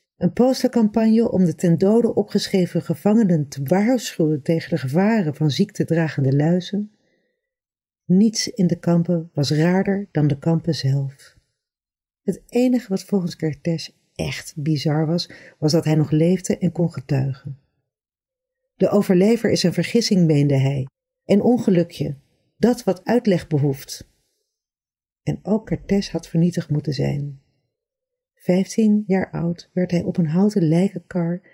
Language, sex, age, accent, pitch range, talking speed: Dutch, female, 40-59, Dutch, 155-200 Hz, 135 wpm